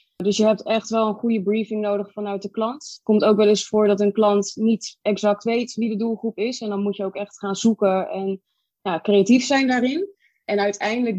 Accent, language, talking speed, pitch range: Dutch, Dutch, 230 wpm, 195-225 Hz